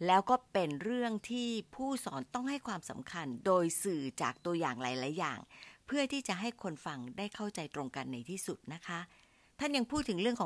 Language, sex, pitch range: Thai, female, 155-235 Hz